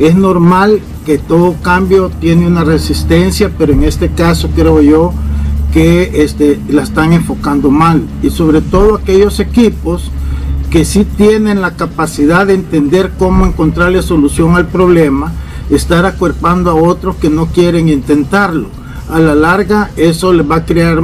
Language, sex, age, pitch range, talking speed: Spanish, male, 50-69, 145-180 Hz, 150 wpm